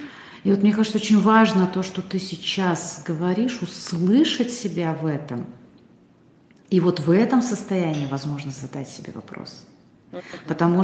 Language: Russian